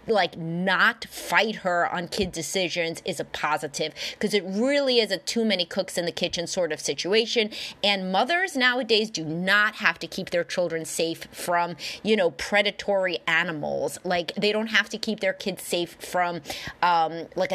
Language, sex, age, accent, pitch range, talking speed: English, female, 30-49, American, 165-205 Hz, 180 wpm